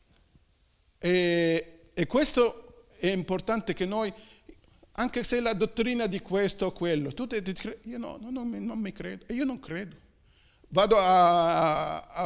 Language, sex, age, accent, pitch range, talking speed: Italian, male, 50-69, native, 160-220 Hz, 165 wpm